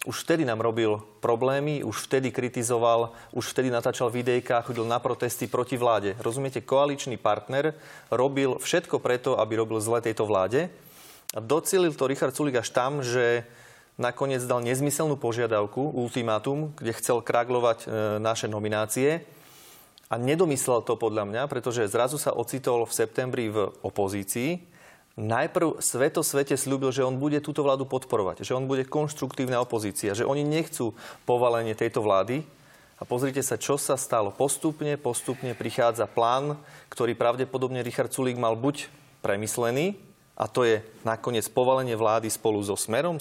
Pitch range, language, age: 115-140 Hz, Slovak, 30-49